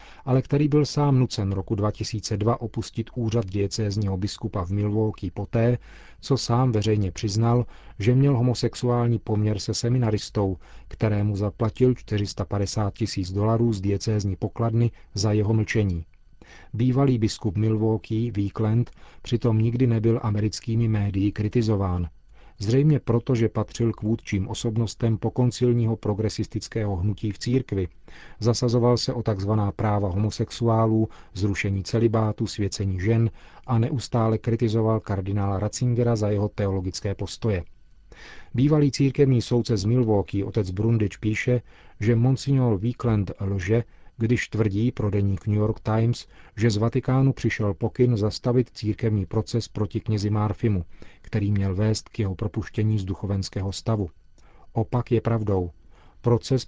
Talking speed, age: 125 wpm, 40-59